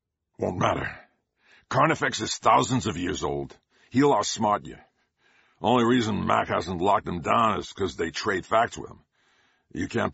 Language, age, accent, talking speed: English, 50-69, American, 160 wpm